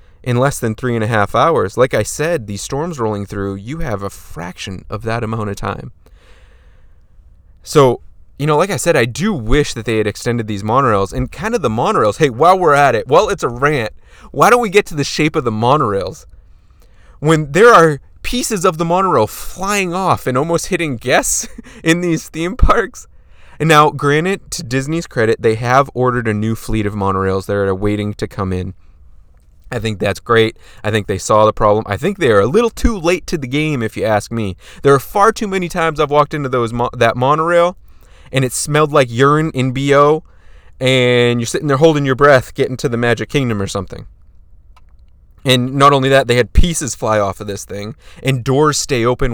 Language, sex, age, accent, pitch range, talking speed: English, male, 20-39, American, 100-150 Hz, 210 wpm